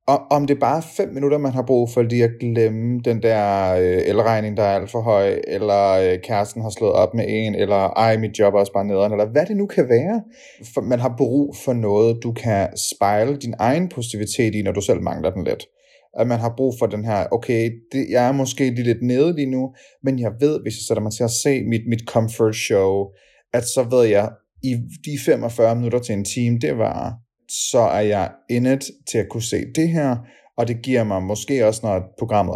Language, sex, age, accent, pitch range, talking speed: Danish, male, 30-49, native, 105-130 Hz, 225 wpm